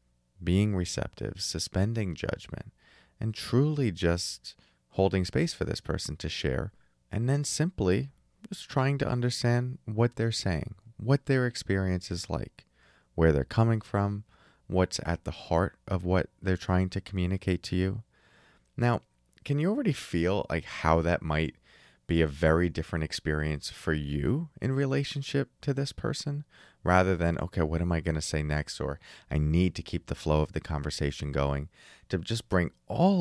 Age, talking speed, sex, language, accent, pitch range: 30-49, 165 wpm, male, English, American, 75-110 Hz